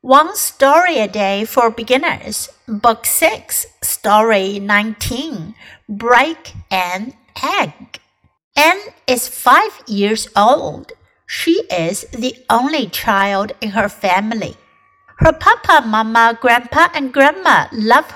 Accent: American